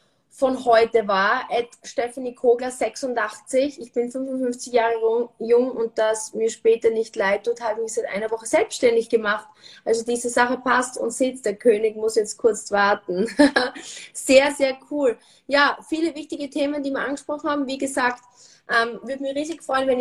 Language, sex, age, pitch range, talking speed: German, female, 20-39, 225-265 Hz, 170 wpm